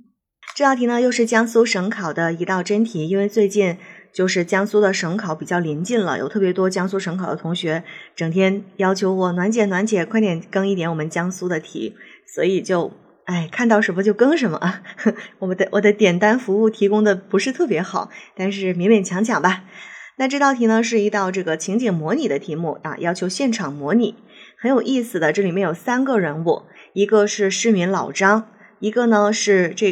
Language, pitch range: Chinese, 180-225 Hz